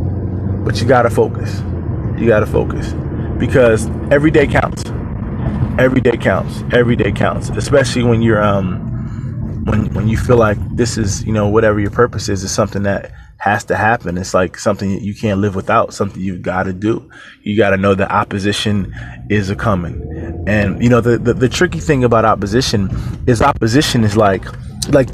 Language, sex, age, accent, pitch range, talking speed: English, male, 20-39, American, 105-135 Hz, 190 wpm